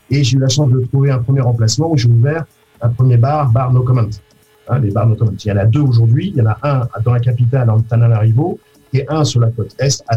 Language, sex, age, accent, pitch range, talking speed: French, male, 50-69, French, 115-145 Hz, 285 wpm